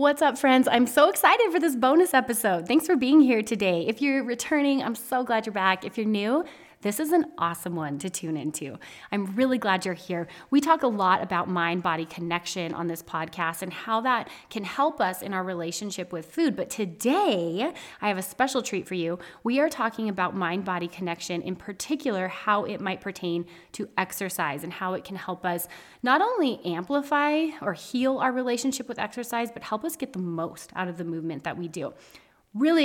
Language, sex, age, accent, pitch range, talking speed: English, female, 30-49, American, 180-255 Hz, 205 wpm